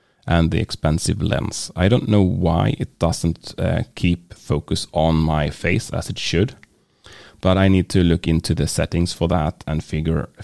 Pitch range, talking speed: 85-105 Hz, 180 wpm